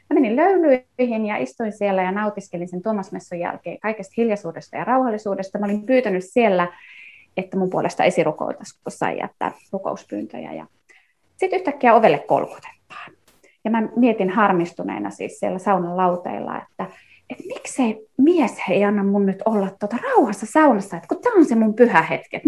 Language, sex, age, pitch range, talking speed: Finnish, female, 20-39, 195-295 Hz, 160 wpm